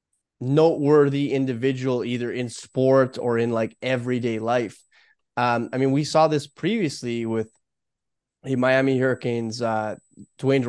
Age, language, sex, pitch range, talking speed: 20-39, English, male, 120-155 Hz, 130 wpm